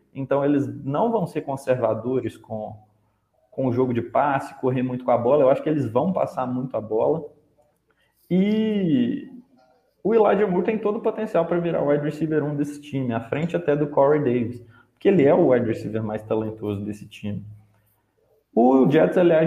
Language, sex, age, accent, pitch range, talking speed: Portuguese, male, 20-39, Brazilian, 125-165 Hz, 190 wpm